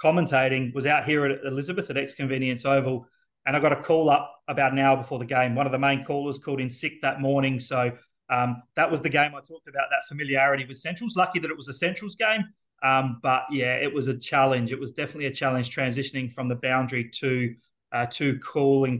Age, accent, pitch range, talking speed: 30-49, Australian, 130-145 Hz, 225 wpm